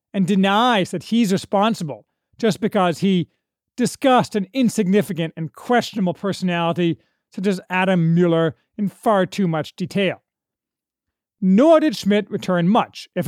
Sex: male